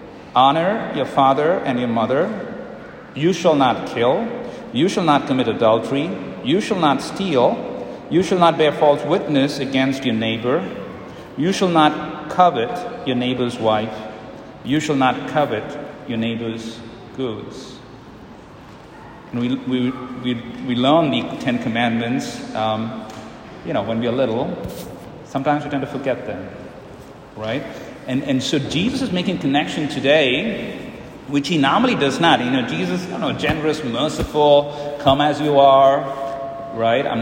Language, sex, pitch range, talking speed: English, male, 125-150 Hz, 145 wpm